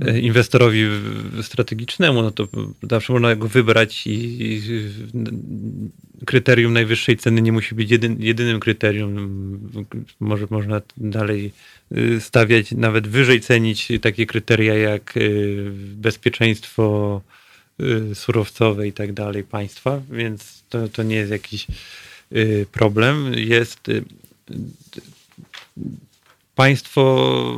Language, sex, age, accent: Polish, male, 40-59, native